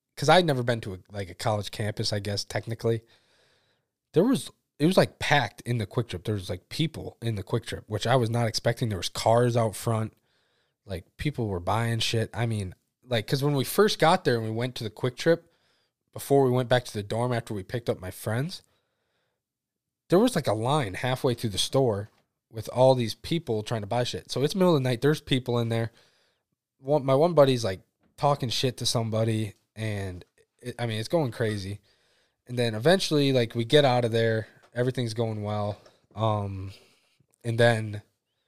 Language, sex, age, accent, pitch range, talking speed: English, male, 20-39, American, 105-130 Hz, 205 wpm